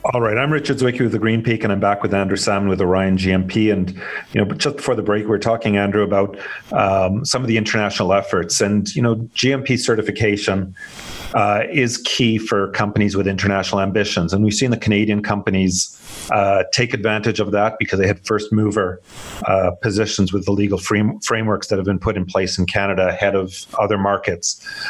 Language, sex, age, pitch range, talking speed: English, male, 40-59, 100-115 Hz, 200 wpm